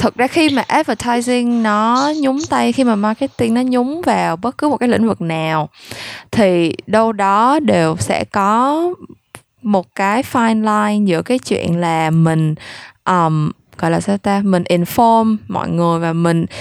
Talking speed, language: 170 wpm, Vietnamese